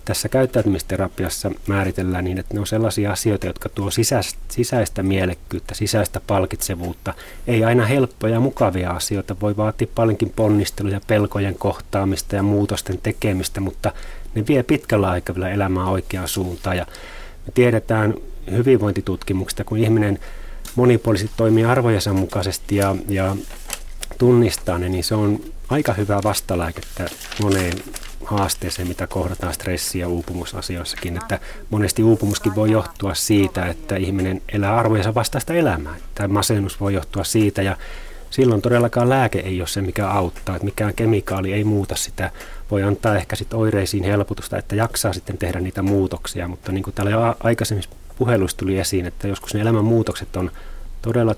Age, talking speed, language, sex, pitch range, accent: 30-49, 145 wpm, Finnish, male, 95-110 Hz, native